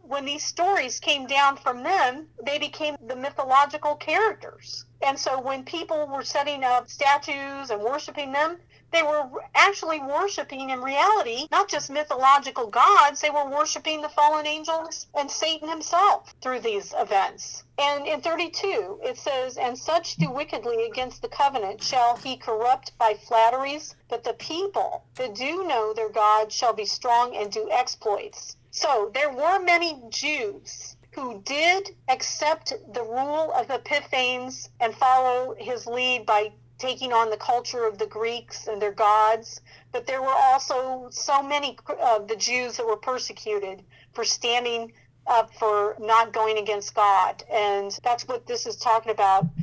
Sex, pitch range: female, 225-300 Hz